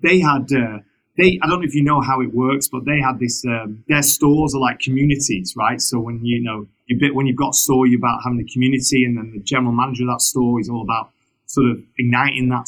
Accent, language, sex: British, English, male